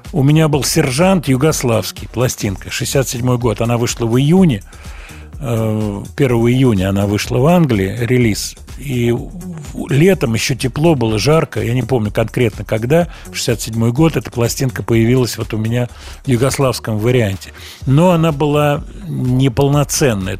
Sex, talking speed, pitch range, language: male, 135 wpm, 105-135 Hz, Russian